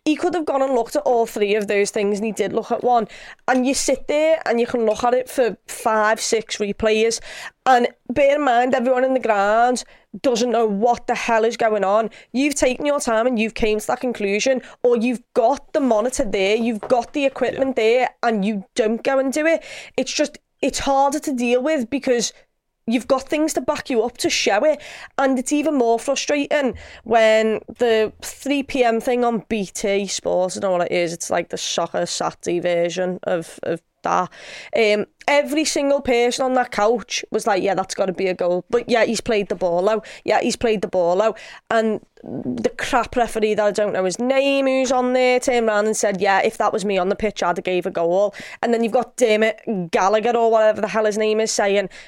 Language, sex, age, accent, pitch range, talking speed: English, female, 20-39, British, 210-260 Hz, 225 wpm